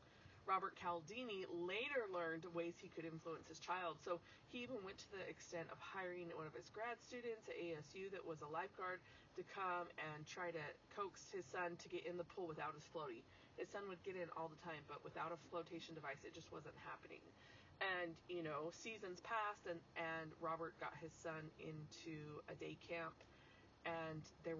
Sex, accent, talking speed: female, American, 195 wpm